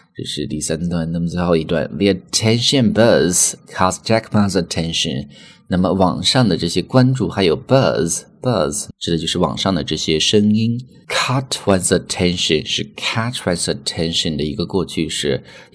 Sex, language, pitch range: male, Chinese, 85-105 Hz